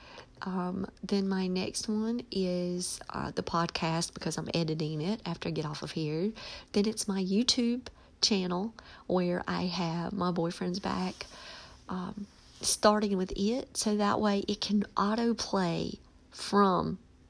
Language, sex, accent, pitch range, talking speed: English, female, American, 175-215 Hz, 145 wpm